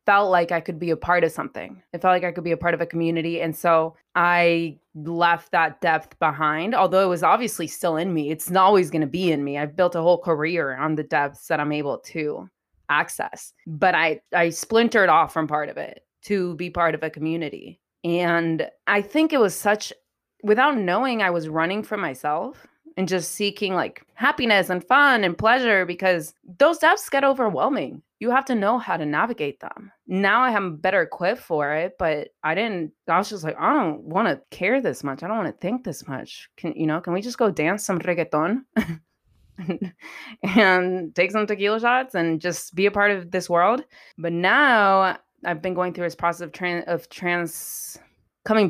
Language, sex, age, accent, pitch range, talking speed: English, female, 20-39, American, 165-205 Hz, 210 wpm